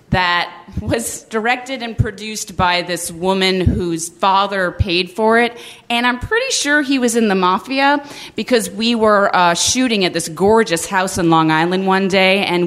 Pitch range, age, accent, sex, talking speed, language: 180-245 Hz, 30-49, American, female, 175 wpm, English